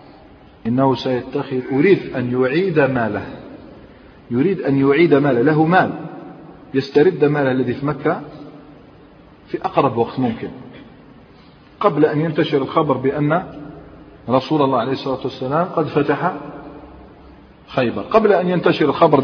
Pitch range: 125-155 Hz